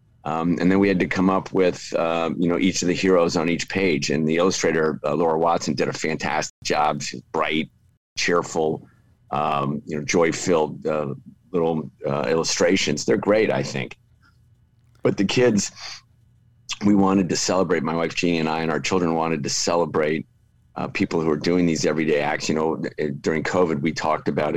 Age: 50-69